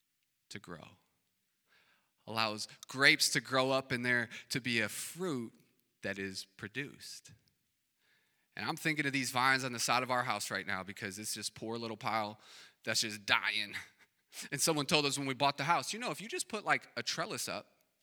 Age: 30-49